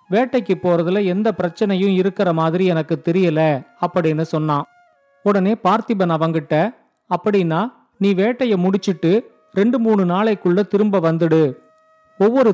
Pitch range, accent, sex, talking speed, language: 170-220 Hz, native, male, 110 wpm, Tamil